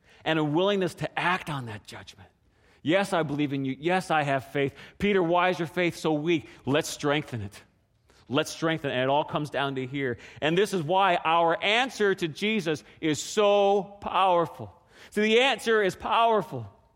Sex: male